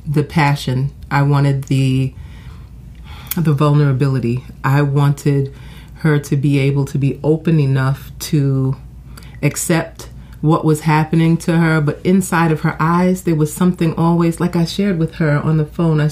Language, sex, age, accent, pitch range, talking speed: English, female, 30-49, American, 140-170 Hz, 155 wpm